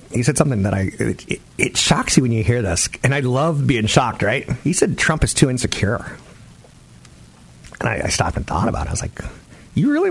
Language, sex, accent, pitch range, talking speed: English, male, American, 100-130 Hz, 225 wpm